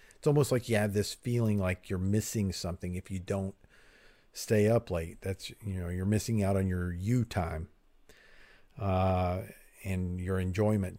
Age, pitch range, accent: 50-69, 95-110 Hz, American